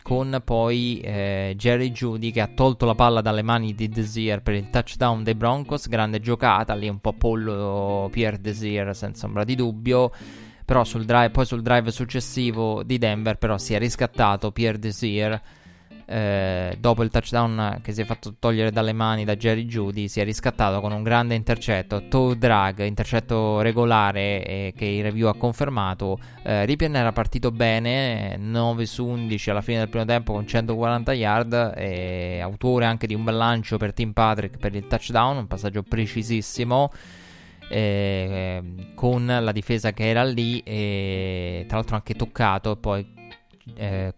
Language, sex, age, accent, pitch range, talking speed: Italian, male, 20-39, native, 100-115 Hz, 165 wpm